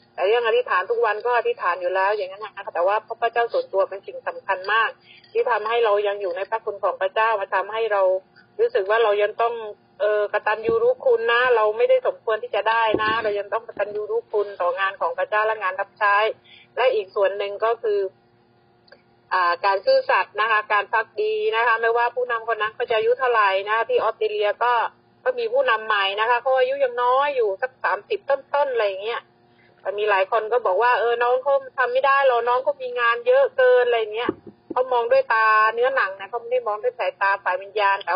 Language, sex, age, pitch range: Thai, female, 30-49, 210-255 Hz